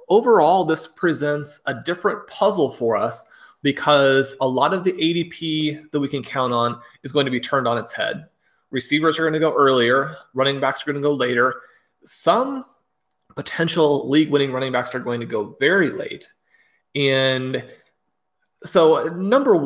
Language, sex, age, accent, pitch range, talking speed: English, male, 30-49, American, 125-155 Hz, 165 wpm